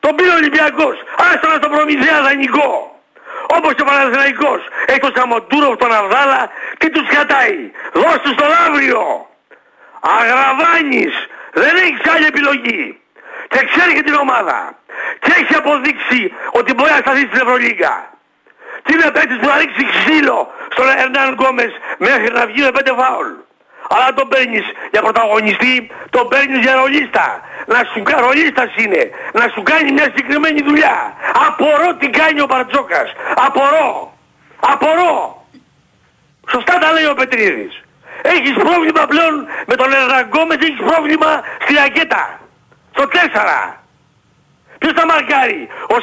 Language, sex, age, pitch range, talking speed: Greek, male, 60-79, 265-320 Hz, 135 wpm